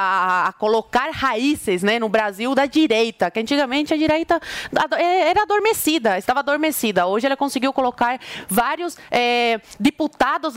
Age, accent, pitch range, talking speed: 20-39, Brazilian, 210-275 Hz, 140 wpm